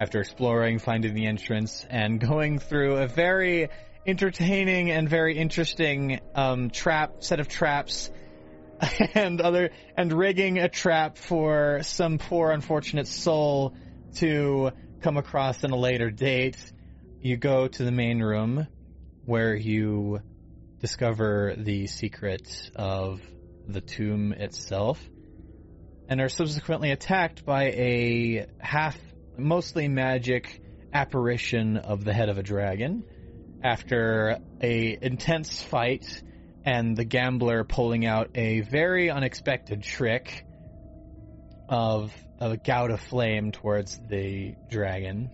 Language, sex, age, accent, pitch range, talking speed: English, male, 30-49, American, 105-145 Hz, 120 wpm